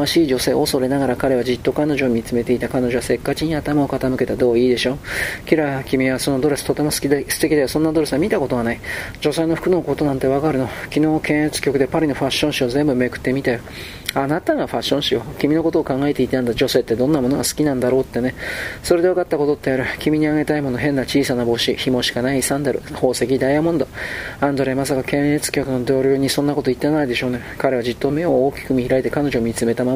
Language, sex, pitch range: Japanese, male, 125-145 Hz